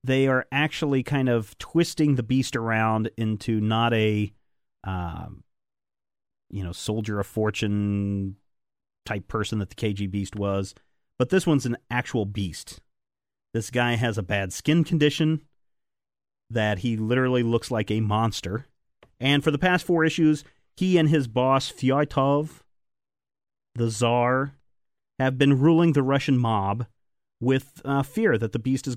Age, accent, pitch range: 40-59, American, 105-140 Hz